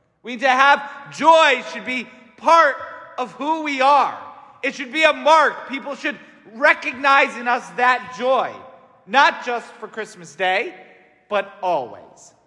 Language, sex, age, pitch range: English, male, 40-59, 220-290 Hz